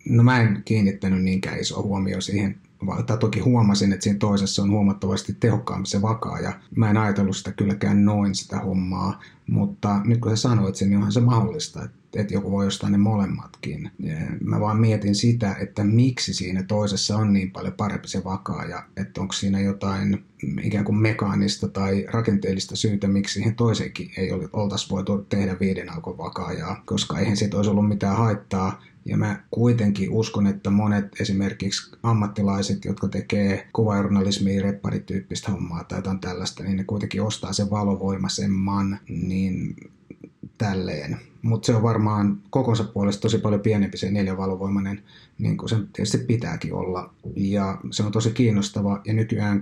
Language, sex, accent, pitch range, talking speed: Finnish, male, native, 95-105 Hz, 165 wpm